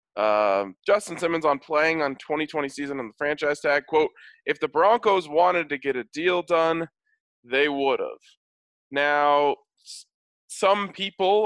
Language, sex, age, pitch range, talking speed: English, male, 20-39, 130-175 Hz, 150 wpm